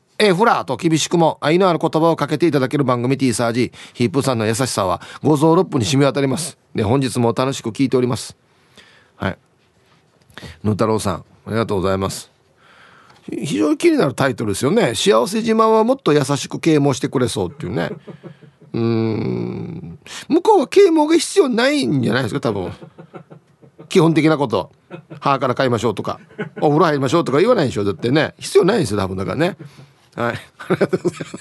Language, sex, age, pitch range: Japanese, male, 40-59, 120-185 Hz